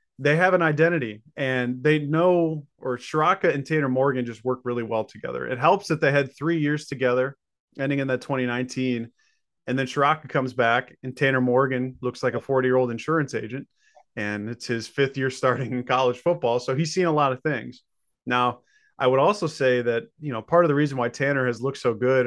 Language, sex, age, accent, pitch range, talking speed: English, male, 30-49, American, 125-145 Hz, 215 wpm